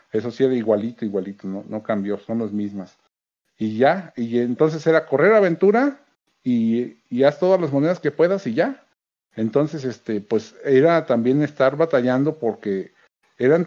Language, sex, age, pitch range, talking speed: Spanish, male, 50-69, 110-135 Hz, 165 wpm